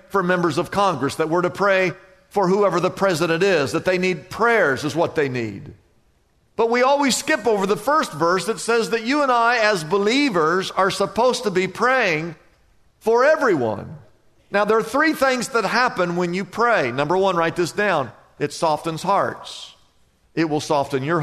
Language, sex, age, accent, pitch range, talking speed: English, male, 50-69, American, 155-195 Hz, 185 wpm